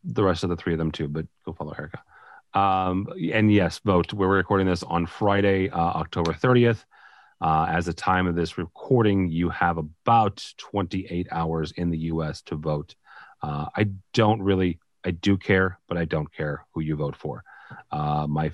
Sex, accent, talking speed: male, American, 190 wpm